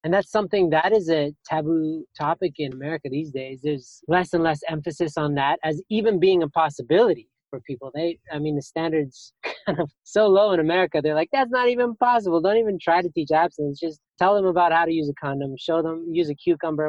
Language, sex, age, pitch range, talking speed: English, male, 20-39, 145-180 Hz, 225 wpm